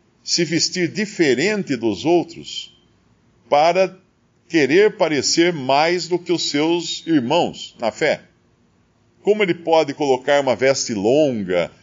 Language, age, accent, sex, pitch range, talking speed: Portuguese, 50-69, Brazilian, male, 130-180 Hz, 115 wpm